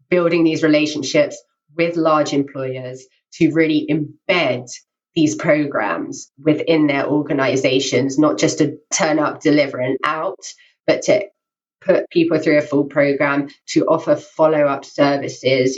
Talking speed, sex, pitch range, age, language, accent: 135 wpm, female, 145-195 Hz, 20-39, English, British